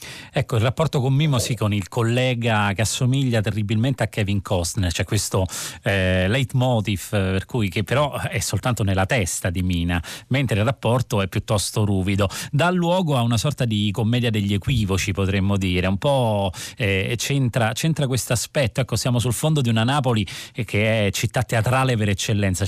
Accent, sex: native, male